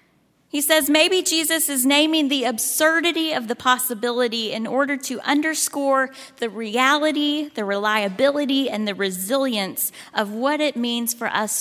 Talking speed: 145 wpm